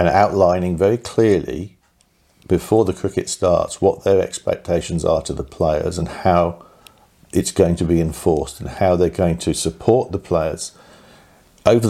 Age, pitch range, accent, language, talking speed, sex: 50-69, 85-100 Hz, British, English, 150 wpm, male